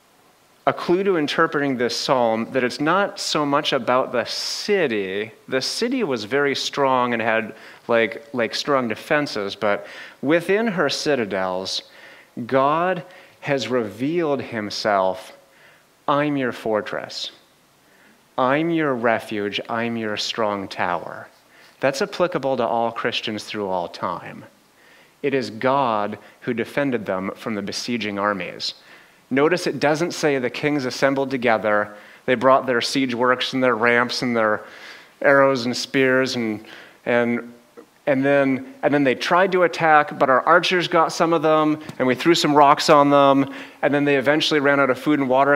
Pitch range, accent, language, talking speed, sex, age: 115-145 Hz, American, English, 155 wpm, male, 30-49